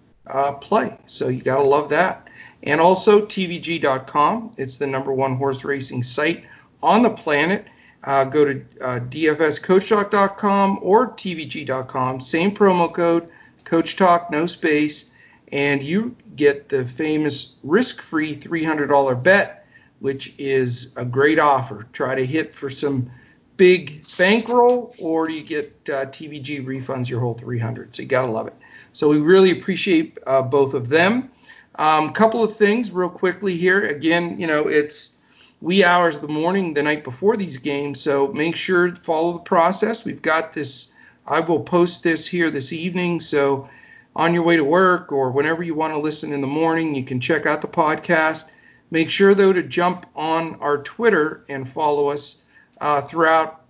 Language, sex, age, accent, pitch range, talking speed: English, male, 50-69, American, 140-175 Hz, 170 wpm